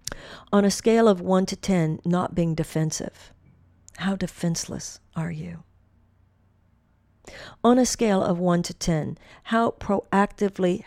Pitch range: 160-205 Hz